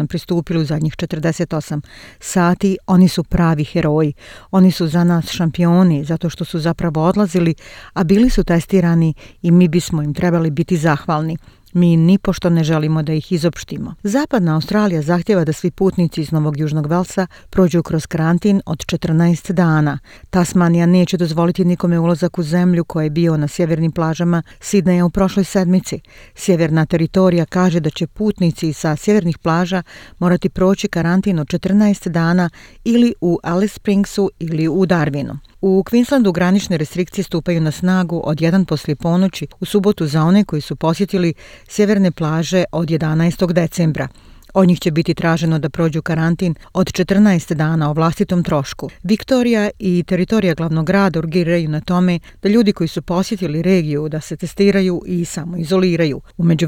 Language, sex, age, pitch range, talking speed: Croatian, female, 40-59, 160-185 Hz, 160 wpm